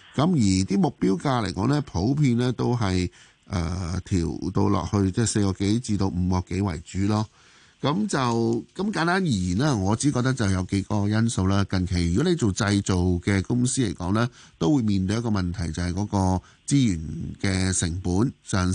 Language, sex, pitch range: Chinese, male, 95-125 Hz